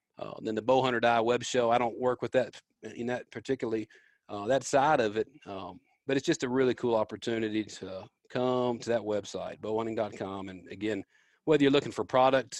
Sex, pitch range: male, 105-125 Hz